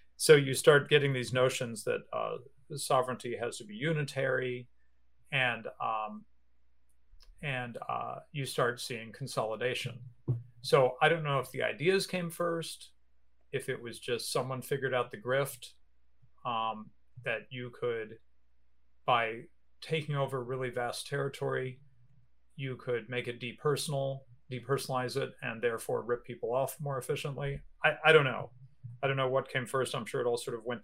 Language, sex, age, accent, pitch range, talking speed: English, male, 40-59, American, 115-145 Hz, 160 wpm